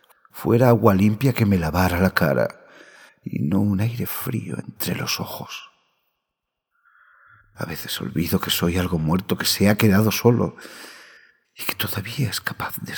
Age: 50-69